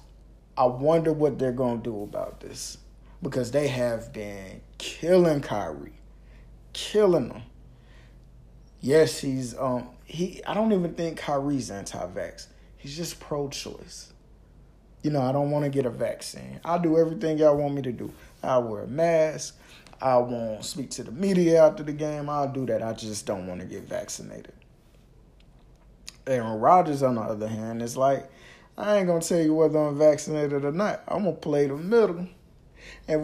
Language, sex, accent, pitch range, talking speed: English, male, American, 120-155 Hz, 175 wpm